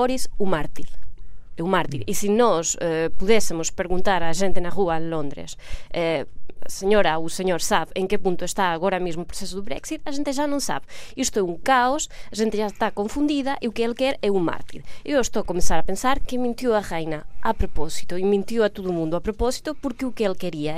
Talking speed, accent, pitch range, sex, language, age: 220 wpm, Spanish, 185-275 Hz, female, Portuguese, 20-39